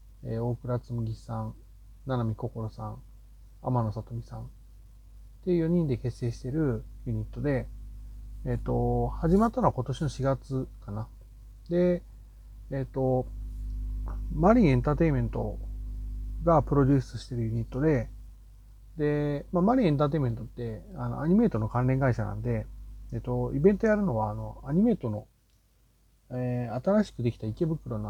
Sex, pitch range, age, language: male, 110-145 Hz, 40-59, Japanese